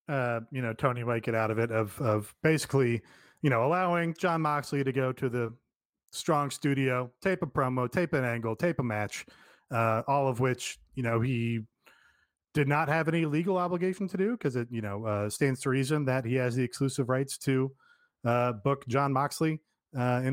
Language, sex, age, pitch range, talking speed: English, male, 30-49, 120-155 Hz, 200 wpm